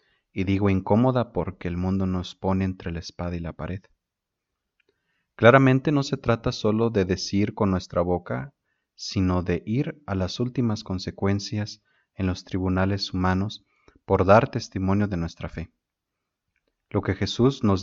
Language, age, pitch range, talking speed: Spanish, 30-49, 90-105 Hz, 150 wpm